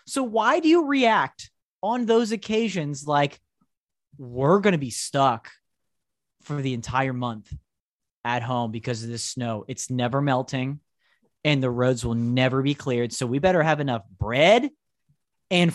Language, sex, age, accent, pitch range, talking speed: English, male, 30-49, American, 125-180 Hz, 155 wpm